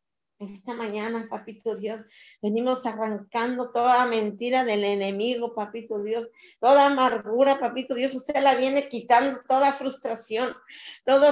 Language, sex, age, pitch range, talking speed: Spanish, female, 50-69, 240-275 Hz, 120 wpm